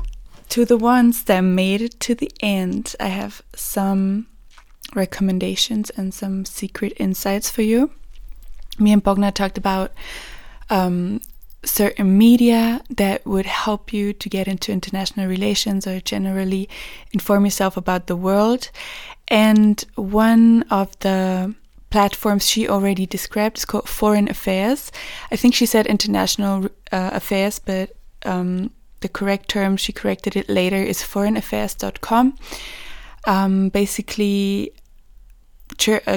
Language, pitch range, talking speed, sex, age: English, 195-225 Hz, 120 wpm, female, 20-39